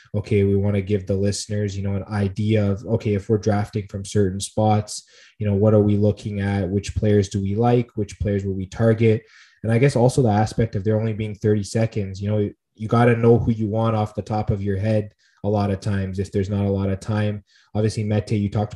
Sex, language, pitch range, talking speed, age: male, English, 100-115 Hz, 250 wpm, 20-39